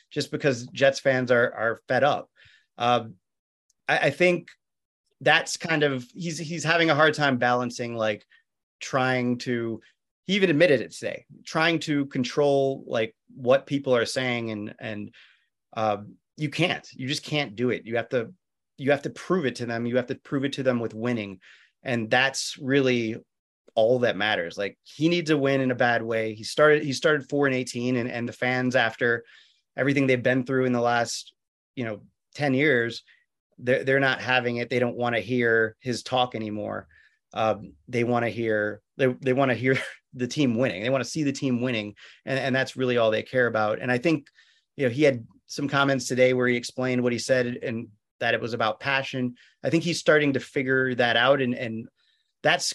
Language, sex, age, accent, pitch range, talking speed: English, male, 30-49, American, 115-140 Hz, 205 wpm